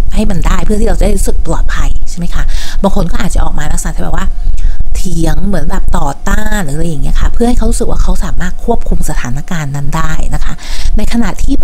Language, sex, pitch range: Thai, female, 150-200 Hz